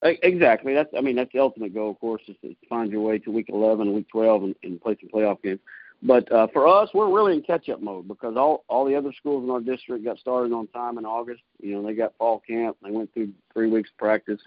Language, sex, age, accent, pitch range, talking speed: English, male, 40-59, American, 105-125 Hz, 265 wpm